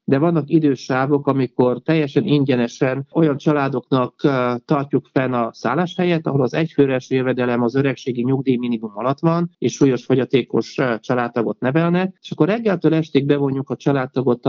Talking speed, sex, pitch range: 140 wpm, male, 125-155 Hz